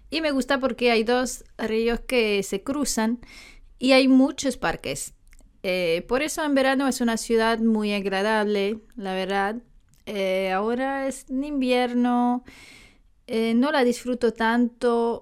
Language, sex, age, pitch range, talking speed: English, female, 20-39, 220-270 Hz, 140 wpm